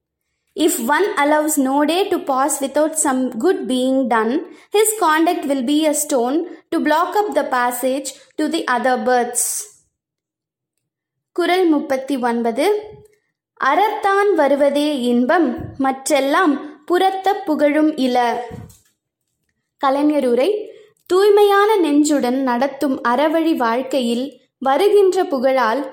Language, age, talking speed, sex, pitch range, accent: Tamil, 20-39, 95 wpm, female, 265-345 Hz, native